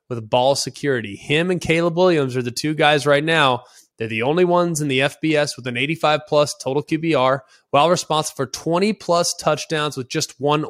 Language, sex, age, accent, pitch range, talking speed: English, male, 20-39, American, 130-160 Hz, 195 wpm